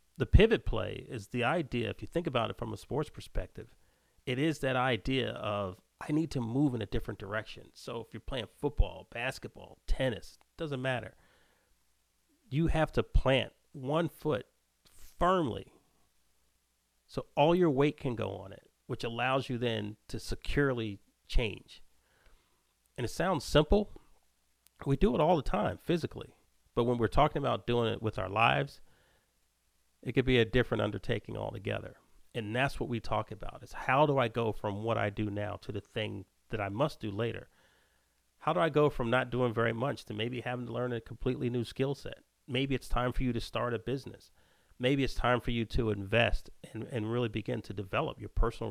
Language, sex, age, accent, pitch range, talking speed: English, male, 40-59, American, 105-130 Hz, 190 wpm